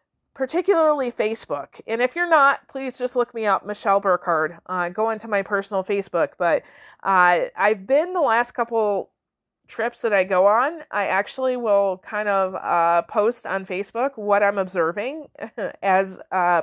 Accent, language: American, English